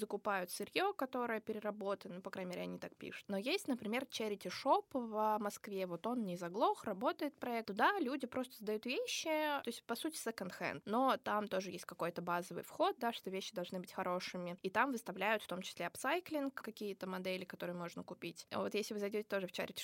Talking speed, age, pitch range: 205 wpm, 20-39, 180-235 Hz